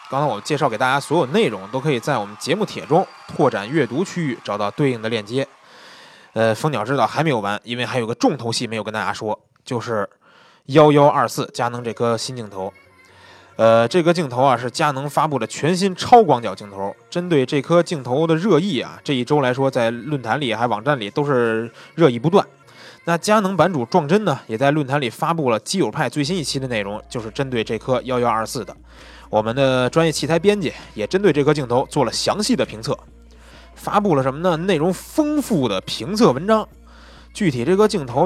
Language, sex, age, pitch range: Chinese, male, 20-39, 110-165 Hz